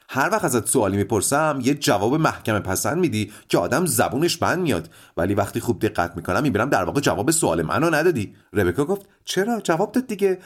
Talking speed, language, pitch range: 185 wpm, Persian, 110-185 Hz